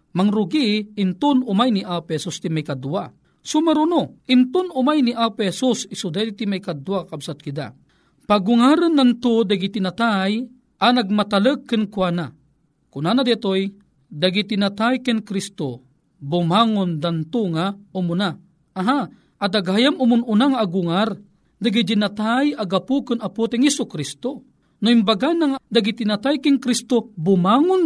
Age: 40-59